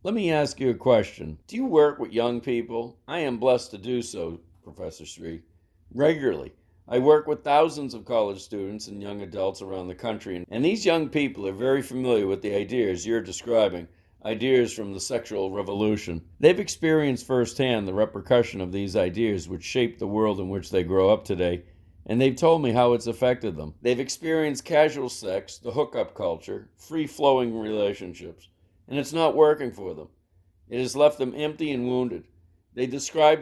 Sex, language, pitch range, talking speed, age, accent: male, English, 95-130 Hz, 180 wpm, 50-69, American